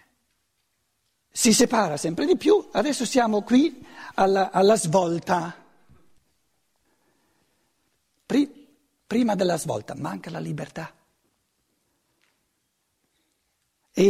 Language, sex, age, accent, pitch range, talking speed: Italian, male, 60-79, native, 170-250 Hz, 75 wpm